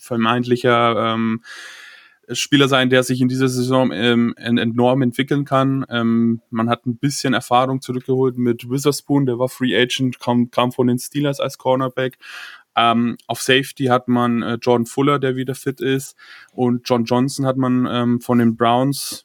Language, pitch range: German, 115-130 Hz